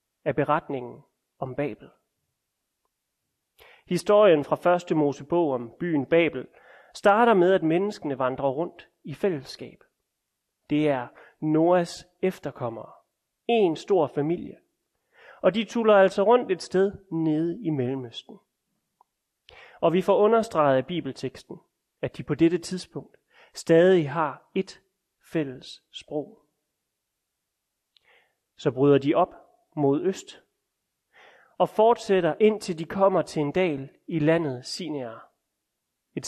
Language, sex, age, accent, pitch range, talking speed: Danish, male, 30-49, native, 145-190 Hz, 115 wpm